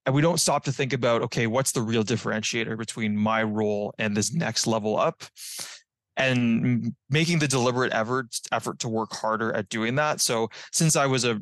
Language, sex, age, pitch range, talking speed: English, male, 20-39, 110-130 Hz, 195 wpm